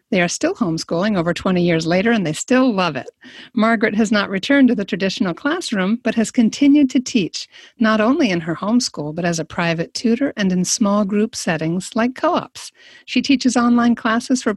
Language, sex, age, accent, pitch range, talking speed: English, female, 50-69, American, 180-240 Hz, 200 wpm